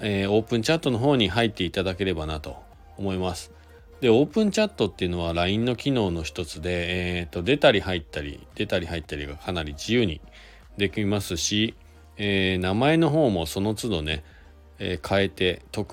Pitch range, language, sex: 80-105 Hz, Japanese, male